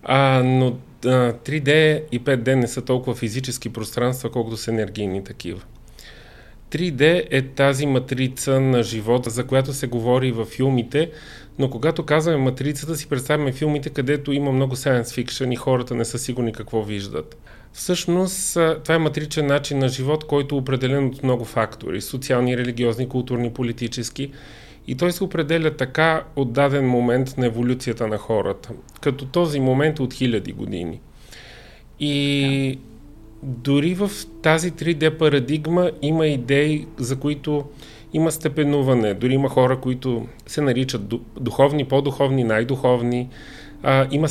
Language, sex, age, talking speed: Bulgarian, male, 30-49, 140 wpm